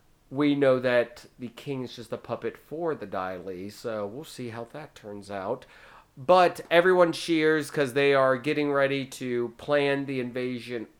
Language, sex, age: English, male, 30-49